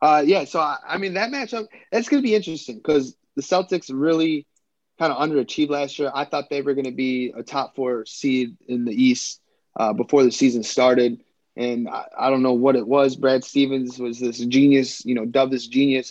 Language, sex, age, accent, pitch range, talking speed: English, male, 20-39, American, 125-145 Hz, 220 wpm